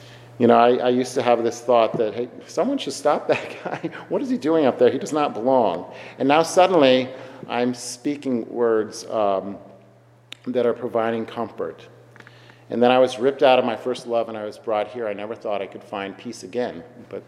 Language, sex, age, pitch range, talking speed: English, male, 40-59, 105-115 Hz, 210 wpm